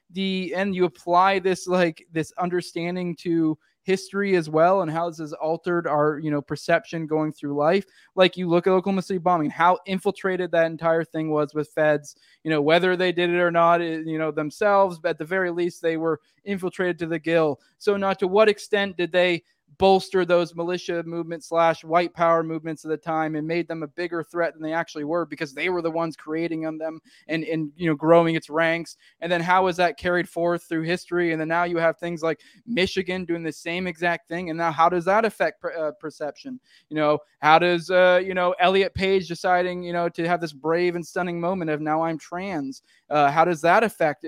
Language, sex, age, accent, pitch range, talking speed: English, male, 20-39, American, 160-185 Hz, 220 wpm